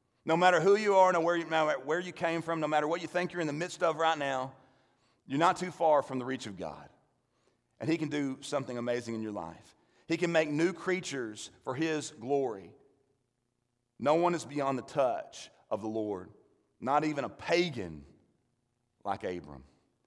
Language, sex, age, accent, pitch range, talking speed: English, male, 40-59, American, 130-170 Hz, 190 wpm